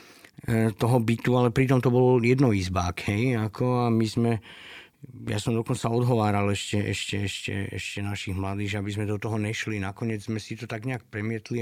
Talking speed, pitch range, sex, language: 175 wpm, 105-120 Hz, male, Slovak